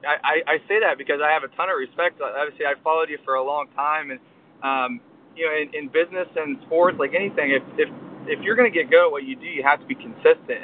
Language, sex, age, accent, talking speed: English, male, 20-39, American, 265 wpm